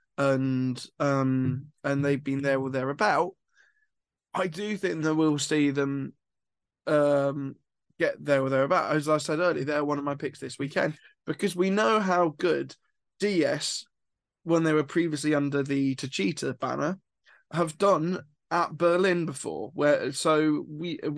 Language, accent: English, British